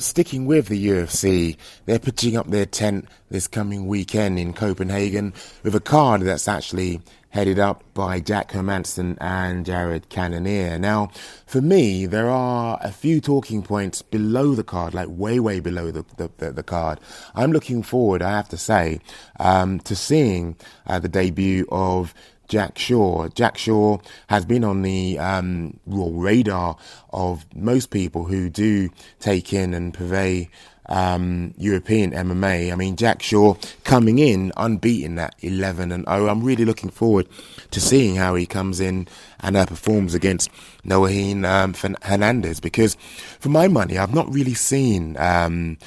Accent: British